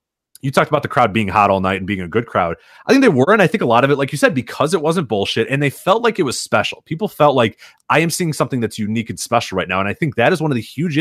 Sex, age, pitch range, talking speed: male, 30-49, 110-140 Hz, 335 wpm